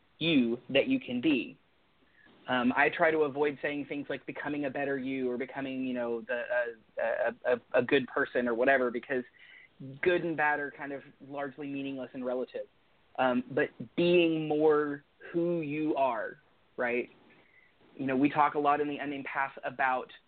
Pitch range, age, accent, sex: 135-175 Hz, 30-49, American, male